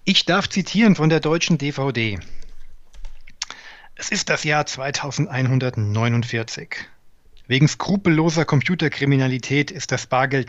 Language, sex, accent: German, male, German